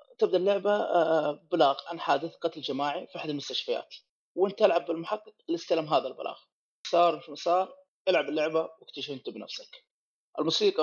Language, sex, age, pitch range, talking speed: Arabic, male, 30-49, 150-205 Hz, 140 wpm